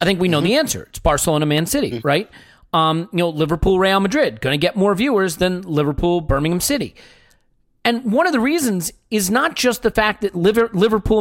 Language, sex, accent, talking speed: English, male, American, 205 wpm